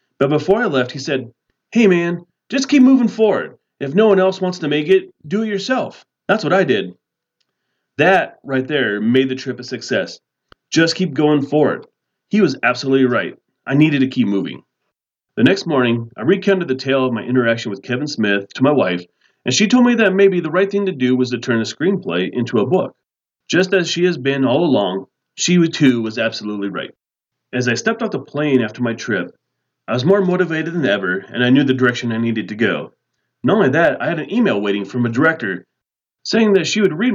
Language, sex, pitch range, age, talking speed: English, male, 125-180 Hz, 40-59, 220 wpm